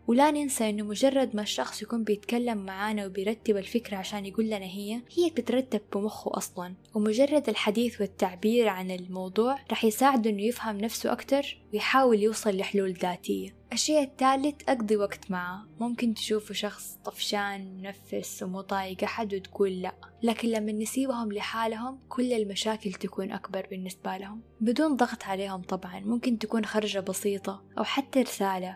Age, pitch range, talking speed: 10-29, 195-230 Hz, 145 wpm